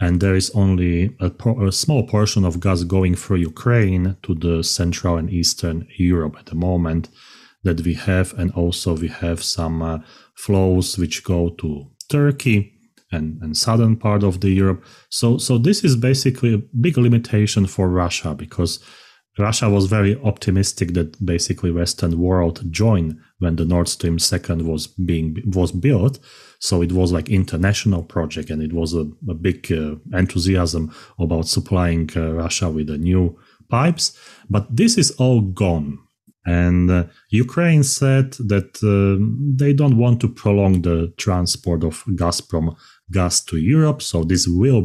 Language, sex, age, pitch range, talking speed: English, male, 30-49, 85-110 Hz, 165 wpm